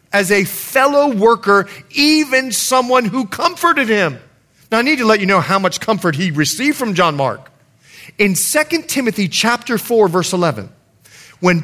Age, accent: 40-59, American